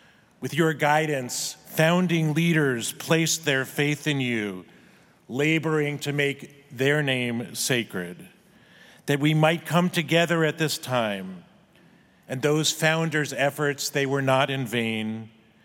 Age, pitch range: 40-59, 130-155 Hz